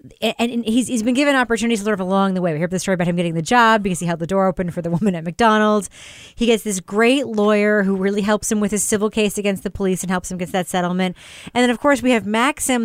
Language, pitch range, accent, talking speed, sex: English, 185-245 Hz, American, 280 wpm, female